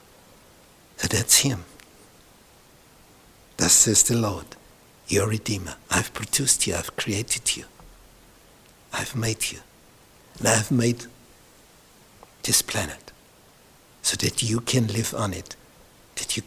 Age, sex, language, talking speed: 60-79, male, English, 115 wpm